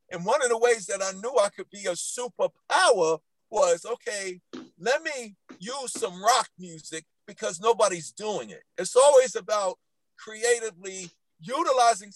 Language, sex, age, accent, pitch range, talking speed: English, male, 50-69, American, 185-255 Hz, 150 wpm